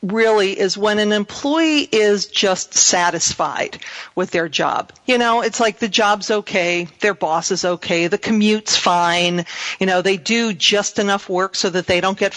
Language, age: English, 40-59